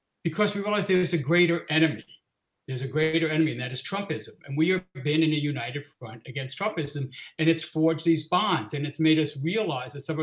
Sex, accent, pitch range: male, American, 145-175 Hz